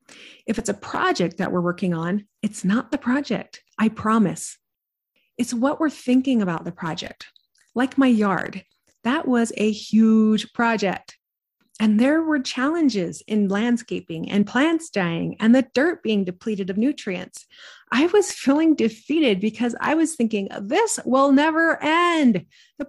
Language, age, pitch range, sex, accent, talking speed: English, 30-49, 205-290 Hz, female, American, 150 wpm